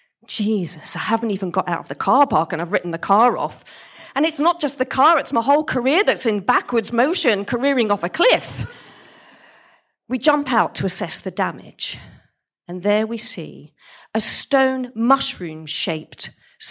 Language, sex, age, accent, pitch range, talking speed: English, female, 40-59, British, 180-260 Hz, 170 wpm